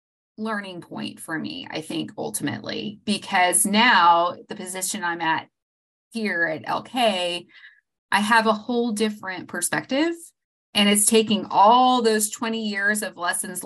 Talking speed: 135 wpm